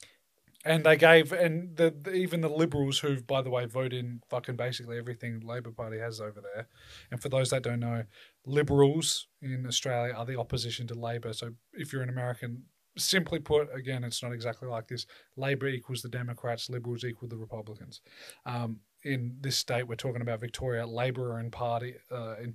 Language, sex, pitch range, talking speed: English, male, 115-130 Hz, 195 wpm